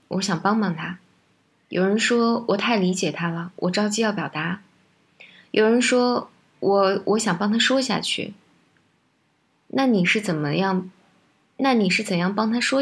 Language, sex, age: Chinese, female, 20-39